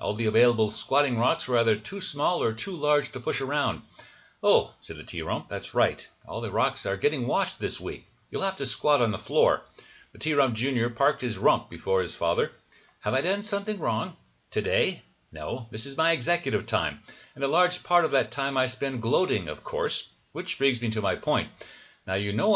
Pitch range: 110-150 Hz